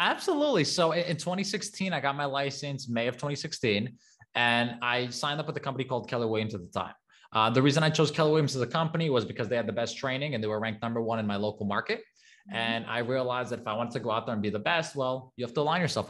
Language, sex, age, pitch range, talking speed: English, male, 20-39, 115-145 Hz, 270 wpm